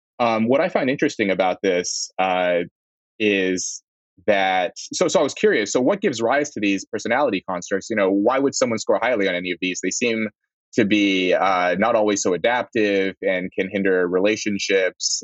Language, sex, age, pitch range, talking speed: English, male, 20-39, 90-105 Hz, 185 wpm